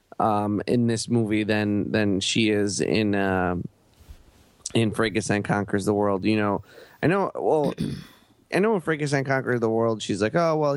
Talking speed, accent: 185 wpm, American